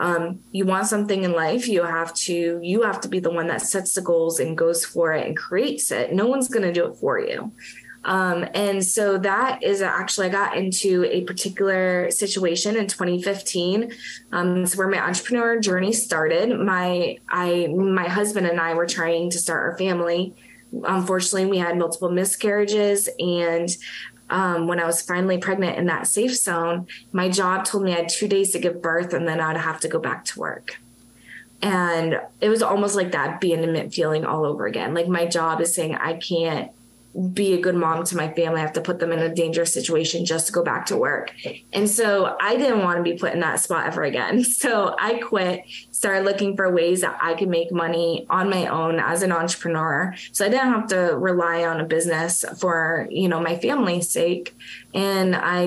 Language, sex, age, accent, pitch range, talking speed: English, female, 20-39, American, 170-195 Hz, 205 wpm